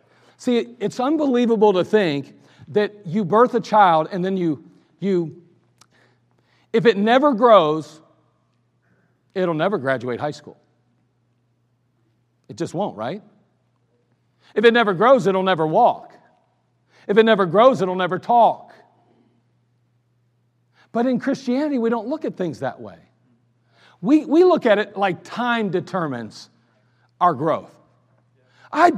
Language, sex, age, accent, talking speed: English, male, 50-69, American, 130 wpm